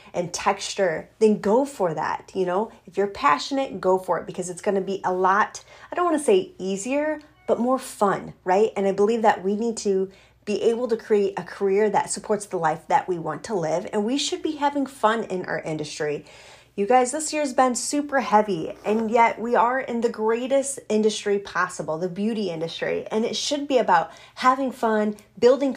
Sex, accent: female, American